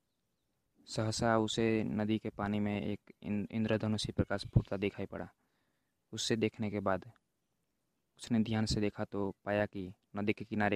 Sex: male